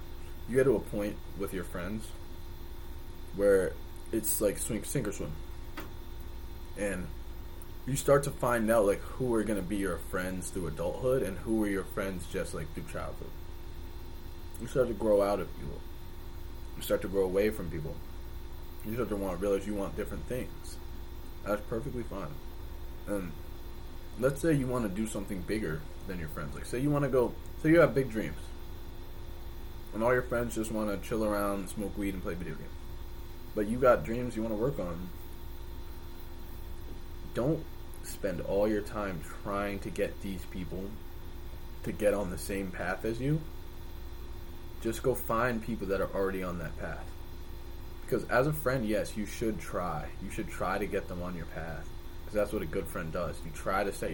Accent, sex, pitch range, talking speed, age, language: American, male, 85-105 Hz, 185 wpm, 20-39, English